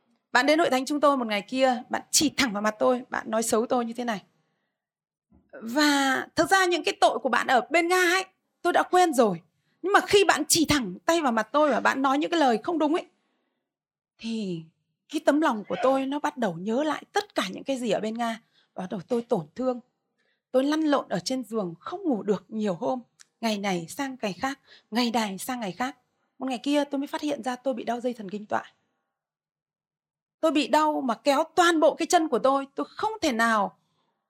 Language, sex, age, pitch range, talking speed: Vietnamese, female, 20-39, 220-305 Hz, 230 wpm